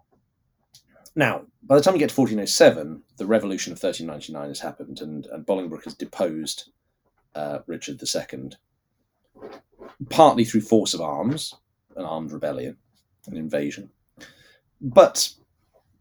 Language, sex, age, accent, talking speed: English, male, 40-59, British, 125 wpm